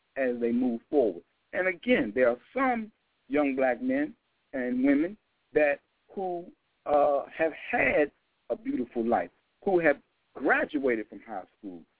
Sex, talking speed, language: male, 140 wpm, English